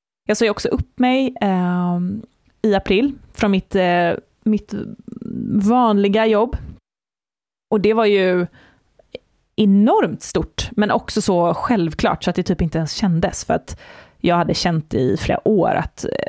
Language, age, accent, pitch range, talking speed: English, 20-39, Swedish, 175-215 Hz, 145 wpm